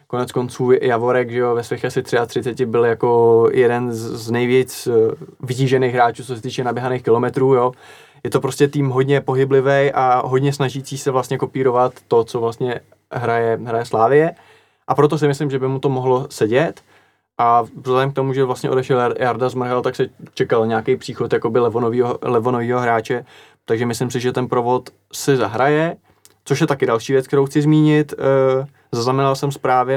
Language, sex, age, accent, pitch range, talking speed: Czech, male, 20-39, native, 120-135 Hz, 170 wpm